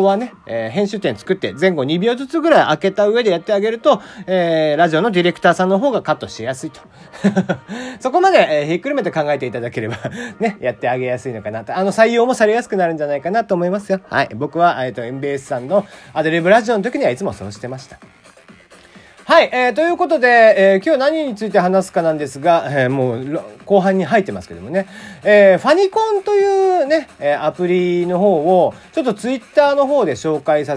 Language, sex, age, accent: Japanese, male, 40-59, native